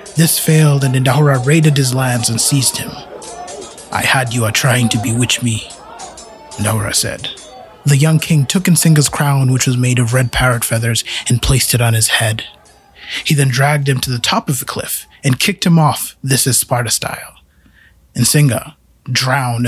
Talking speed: 175 wpm